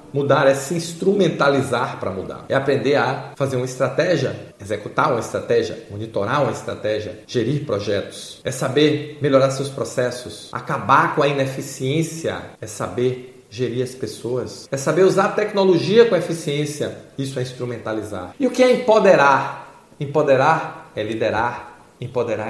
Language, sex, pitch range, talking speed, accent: Portuguese, male, 130-160 Hz, 140 wpm, Brazilian